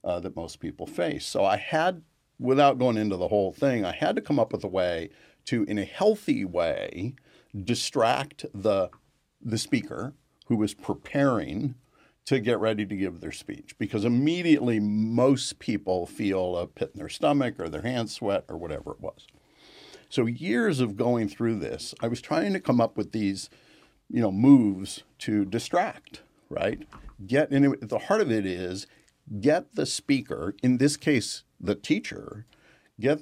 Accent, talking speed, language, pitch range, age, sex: American, 170 wpm, English, 100-135 Hz, 50-69, male